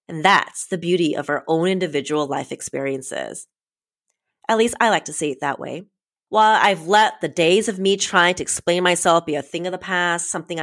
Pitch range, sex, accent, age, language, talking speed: 160-210 Hz, female, American, 30-49, English, 210 wpm